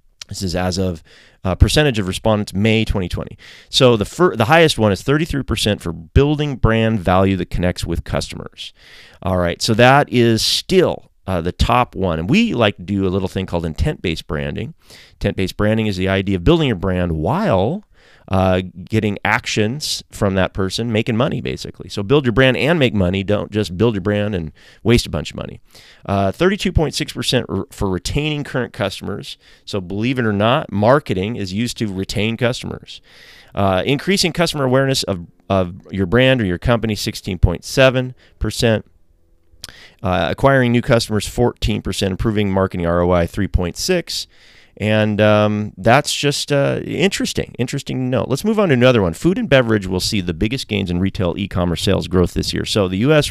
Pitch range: 90-120 Hz